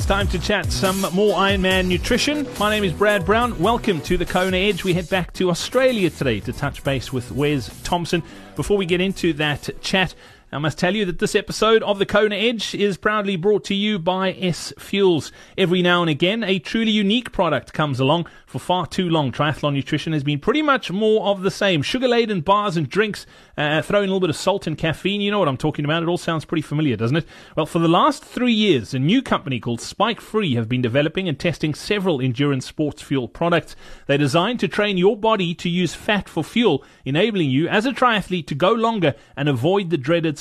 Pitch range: 150-205 Hz